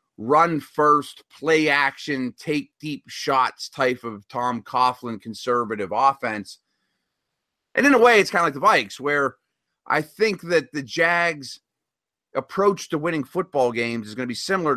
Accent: American